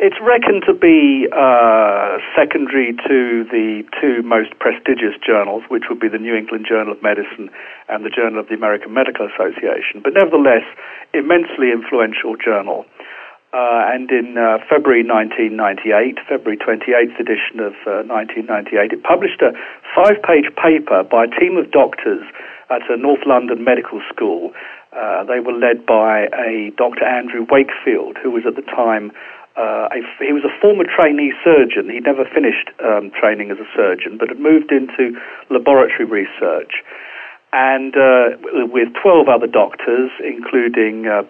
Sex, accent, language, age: male, British, English, 50-69